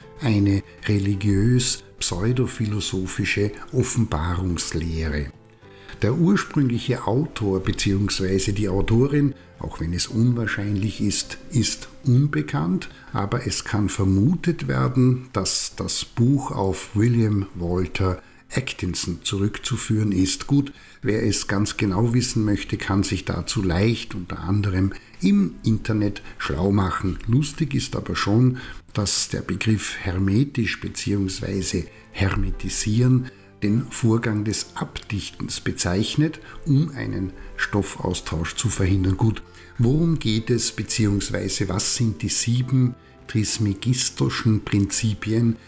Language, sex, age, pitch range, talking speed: German, male, 60-79, 95-120 Hz, 105 wpm